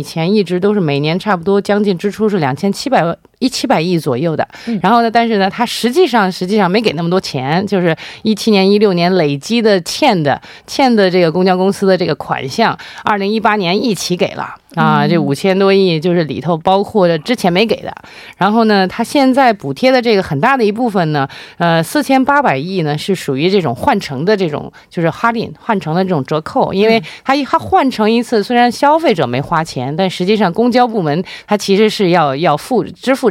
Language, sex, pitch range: Korean, female, 170-230 Hz